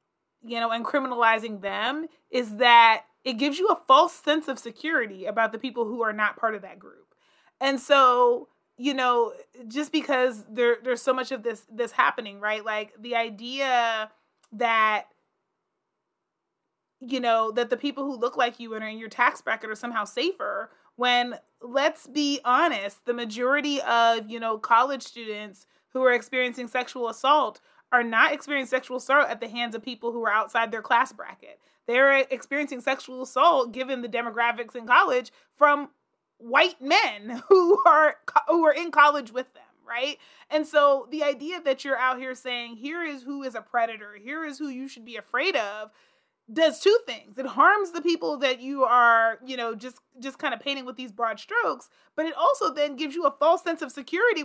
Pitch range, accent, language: 235-300 Hz, American, English